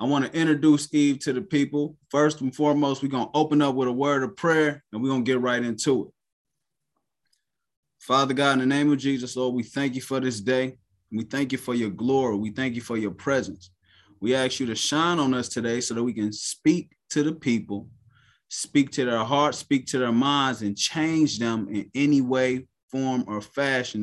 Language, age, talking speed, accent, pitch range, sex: English, 20-39, 220 wpm, American, 115-145 Hz, male